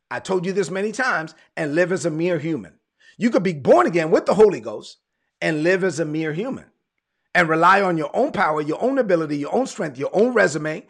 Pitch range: 175-215 Hz